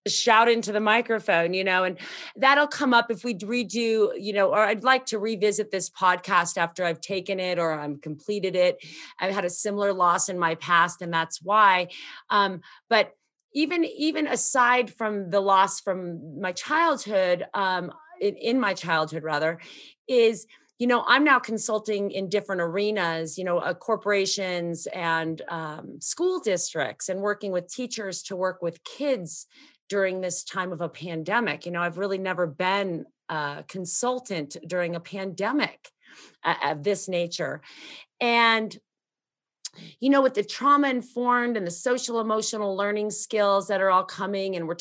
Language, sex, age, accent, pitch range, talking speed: English, female, 40-59, American, 180-235 Hz, 160 wpm